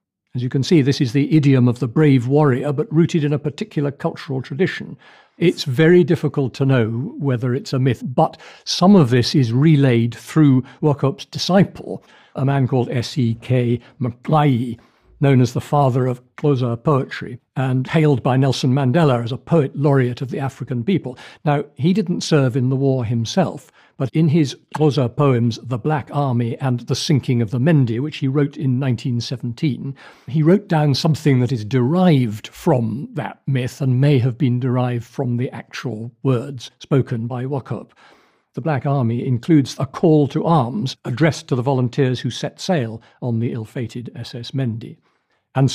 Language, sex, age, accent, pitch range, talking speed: English, male, 60-79, British, 125-155 Hz, 175 wpm